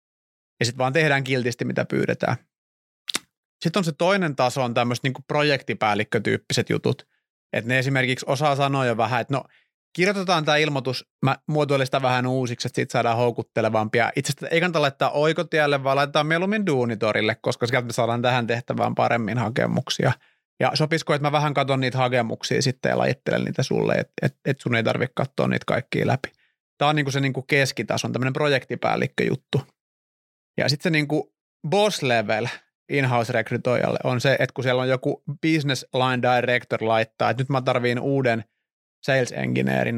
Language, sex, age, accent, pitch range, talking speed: Finnish, male, 30-49, native, 120-150 Hz, 165 wpm